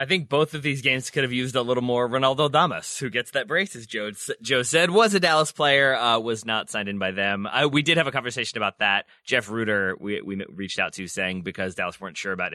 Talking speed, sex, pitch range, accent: 260 wpm, male, 105-155 Hz, American